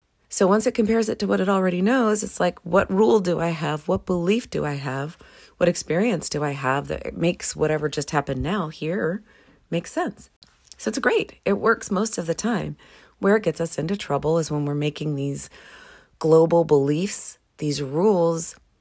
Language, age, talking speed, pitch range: English, 40-59, 190 wpm, 150-185 Hz